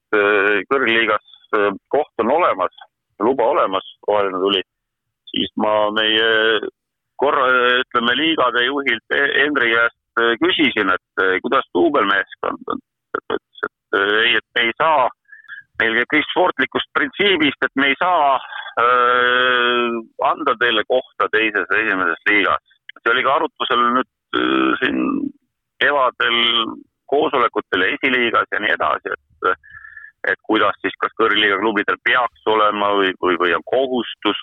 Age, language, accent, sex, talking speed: 50-69, English, Finnish, male, 120 wpm